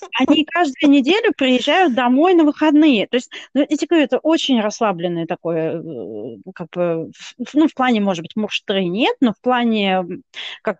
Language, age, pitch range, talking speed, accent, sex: Russian, 30-49, 185-255 Hz, 155 wpm, native, female